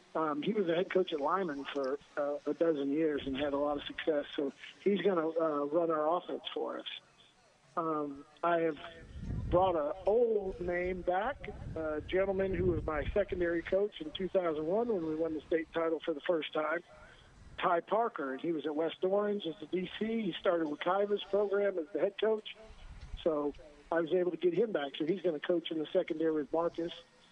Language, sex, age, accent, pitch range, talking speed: English, male, 50-69, American, 155-185 Hz, 205 wpm